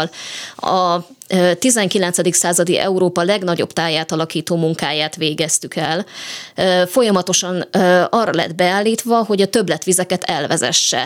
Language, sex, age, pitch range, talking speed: Hungarian, female, 20-39, 170-200 Hz, 100 wpm